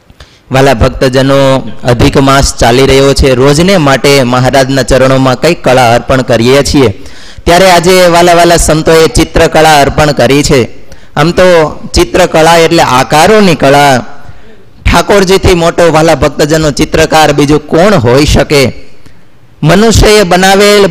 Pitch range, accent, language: 135-170 Hz, native, Gujarati